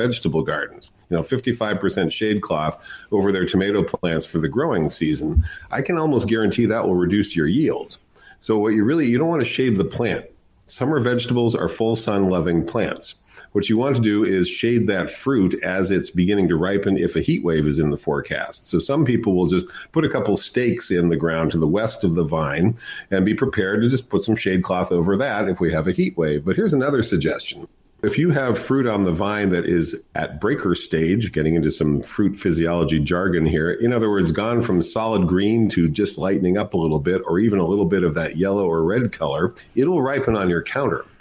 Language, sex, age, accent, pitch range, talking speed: English, male, 50-69, American, 85-115 Hz, 220 wpm